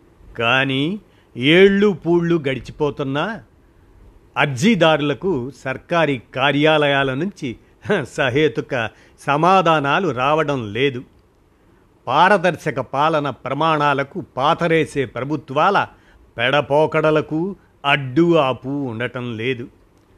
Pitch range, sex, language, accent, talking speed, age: 125-160 Hz, male, Telugu, native, 65 wpm, 50-69